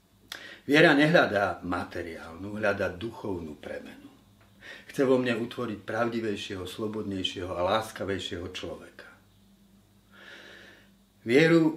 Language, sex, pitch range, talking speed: Slovak, male, 100-115 Hz, 80 wpm